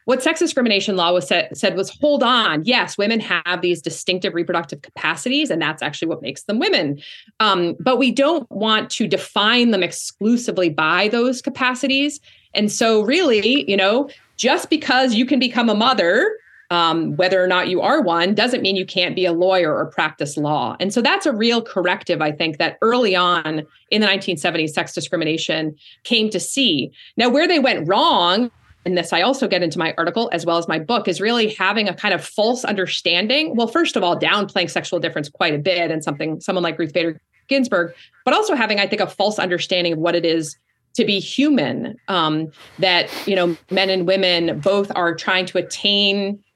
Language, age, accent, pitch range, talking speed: English, 30-49, American, 175-240 Hz, 200 wpm